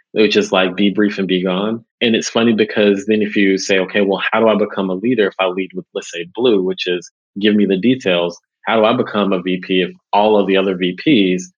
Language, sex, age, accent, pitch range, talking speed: English, male, 30-49, American, 95-110 Hz, 255 wpm